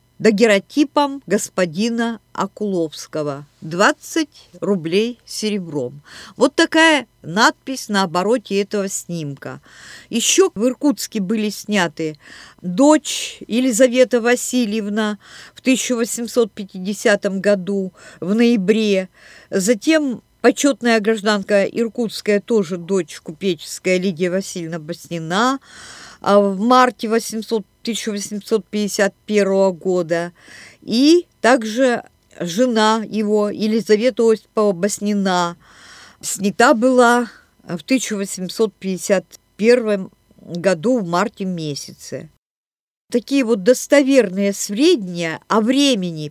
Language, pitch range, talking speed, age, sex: Russian, 190-245 Hz, 80 wpm, 50-69, female